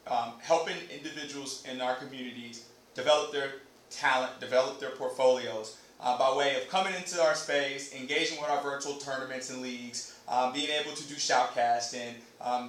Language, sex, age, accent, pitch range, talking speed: English, male, 30-49, American, 135-175 Hz, 160 wpm